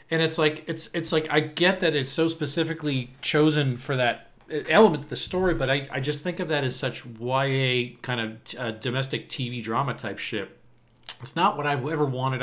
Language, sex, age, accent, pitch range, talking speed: English, male, 40-59, American, 120-150 Hz, 210 wpm